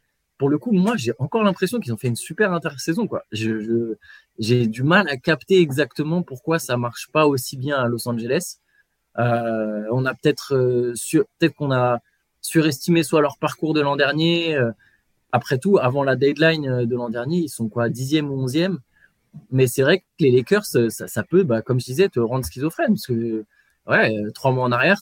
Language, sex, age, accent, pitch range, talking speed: French, male, 20-39, French, 120-155 Hz, 200 wpm